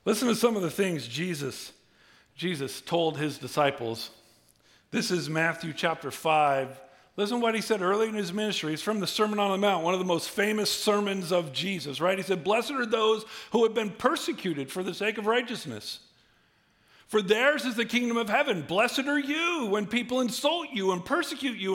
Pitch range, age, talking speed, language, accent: 165-255 Hz, 50-69, 200 wpm, English, American